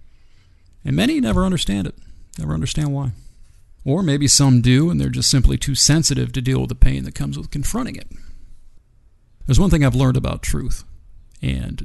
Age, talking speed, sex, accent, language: 40-59, 180 wpm, male, American, English